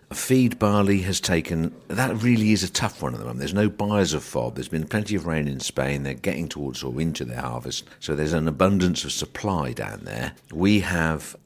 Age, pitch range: 50-69, 70-90 Hz